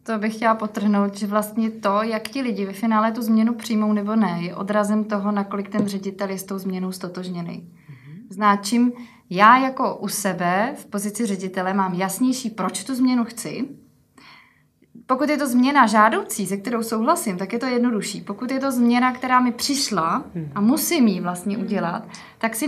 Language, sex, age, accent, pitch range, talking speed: Czech, female, 20-39, native, 205-240 Hz, 180 wpm